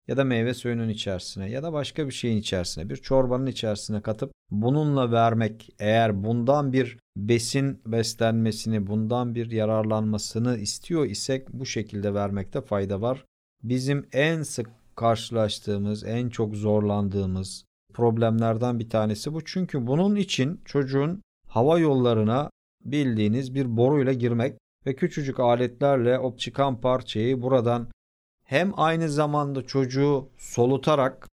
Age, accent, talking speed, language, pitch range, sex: 50-69, native, 125 wpm, Turkish, 110-140 Hz, male